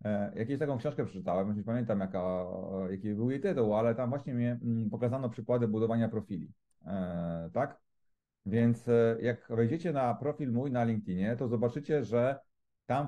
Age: 40-59